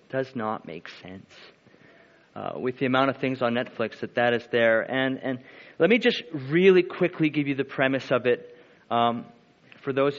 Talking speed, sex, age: 190 wpm, male, 30-49